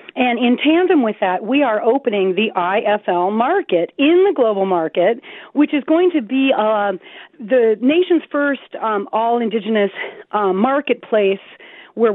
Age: 40-59